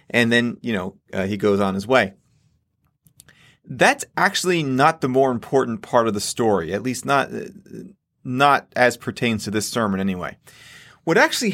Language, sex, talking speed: English, male, 170 wpm